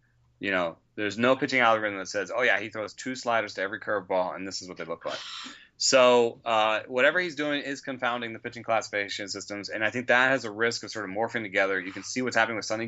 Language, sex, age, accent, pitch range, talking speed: English, male, 30-49, American, 100-120 Hz, 250 wpm